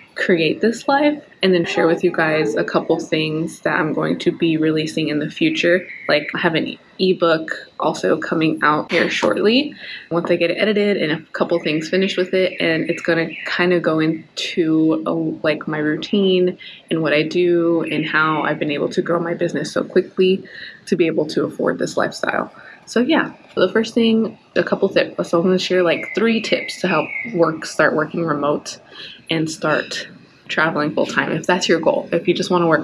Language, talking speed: English, 200 wpm